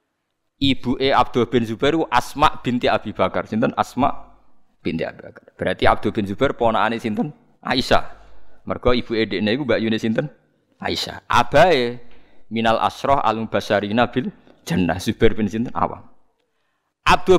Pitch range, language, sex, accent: 100-120 Hz, Indonesian, male, native